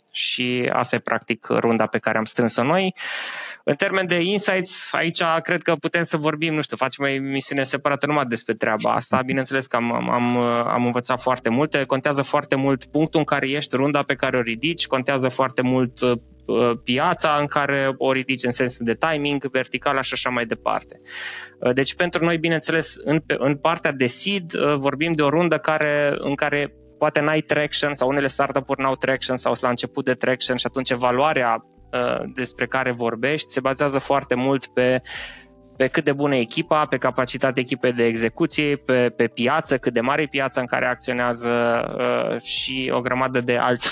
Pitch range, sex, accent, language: 125-150 Hz, male, native, Romanian